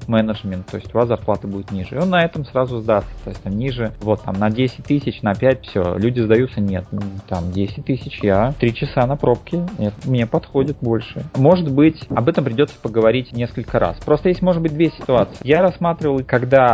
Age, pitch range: 30-49, 110-145 Hz